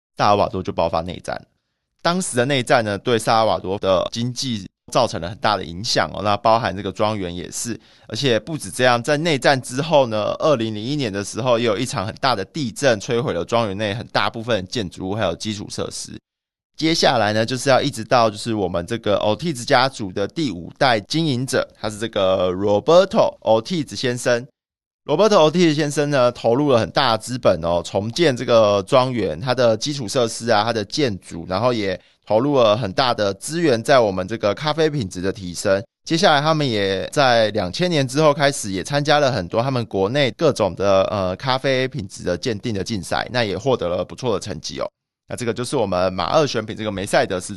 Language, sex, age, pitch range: Chinese, male, 20-39, 100-140 Hz